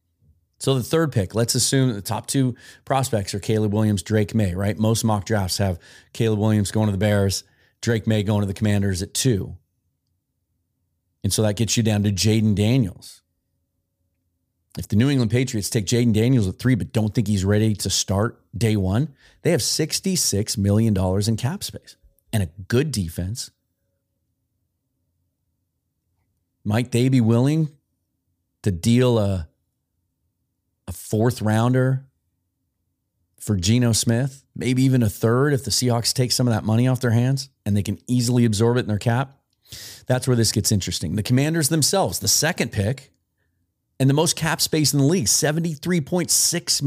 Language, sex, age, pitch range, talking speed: English, male, 30-49, 100-130 Hz, 165 wpm